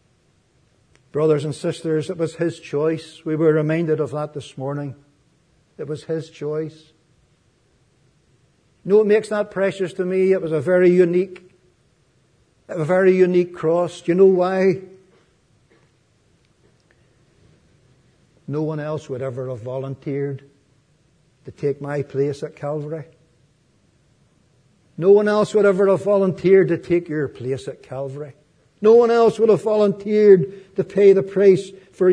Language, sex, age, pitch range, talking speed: English, male, 60-79, 145-190 Hz, 140 wpm